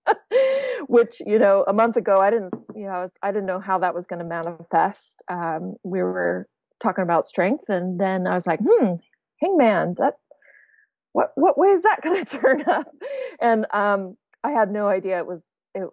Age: 30-49